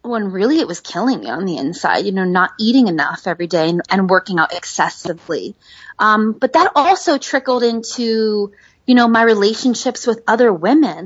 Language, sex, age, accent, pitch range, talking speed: English, female, 20-39, American, 195-245 Hz, 185 wpm